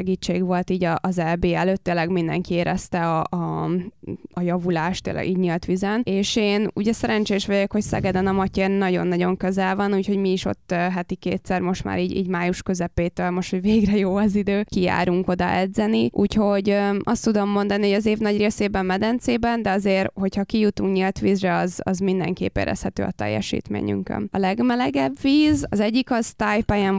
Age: 20-39